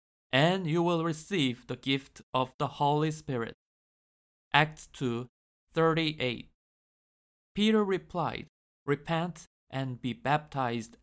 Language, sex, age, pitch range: Korean, male, 20-39, 120-155 Hz